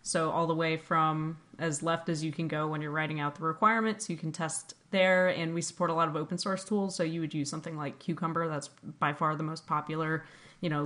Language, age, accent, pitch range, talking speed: English, 20-39, American, 155-175 Hz, 250 wpm